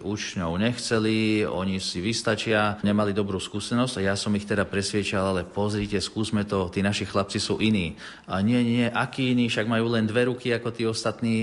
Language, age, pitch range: Slovak, 40-59, 95-110 Hz